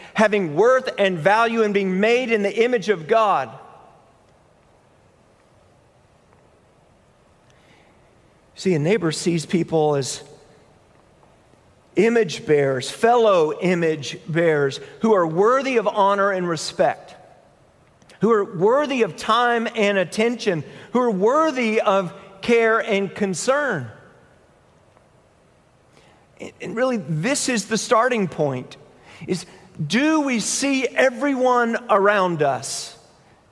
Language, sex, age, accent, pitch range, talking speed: English, male, 40-59, American, 165-225 Hz, 100 wpm